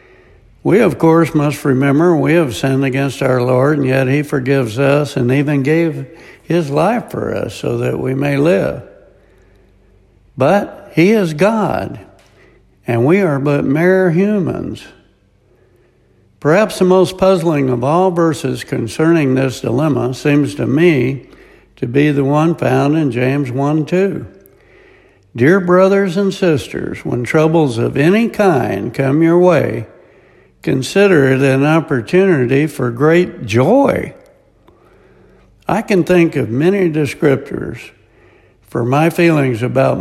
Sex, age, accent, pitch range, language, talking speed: male, 60-79, American, 130-170 Hz, English, 135 wpm